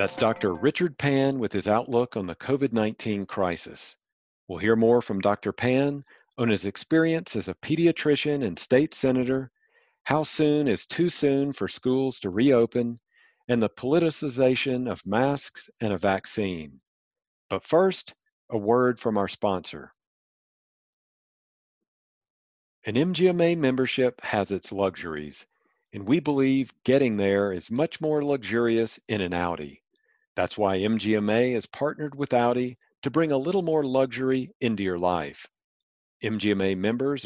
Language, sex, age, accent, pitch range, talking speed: English, male, 50-69, American, 105-145 Hz, 140 wpm